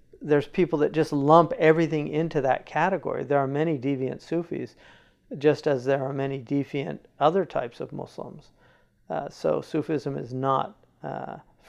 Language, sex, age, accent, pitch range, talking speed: English, male, 50-69, American, 135-160 Hz, 155 wpm